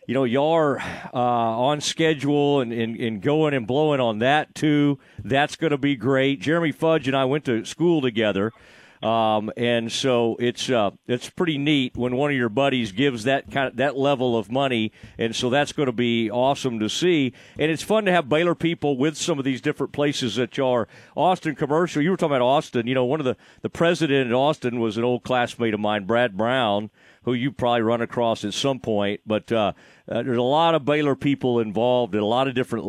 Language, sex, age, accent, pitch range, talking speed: English, male, 40-59, American, 120-155 Hz, 225 wpm